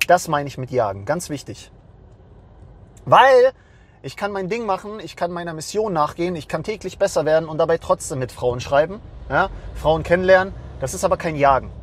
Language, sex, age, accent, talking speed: English, male, 30-49, German, 190 wpm